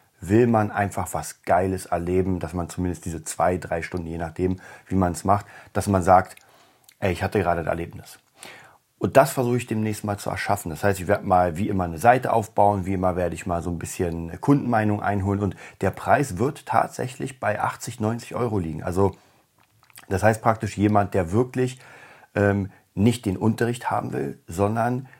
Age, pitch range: 40-59, 95-110 Hz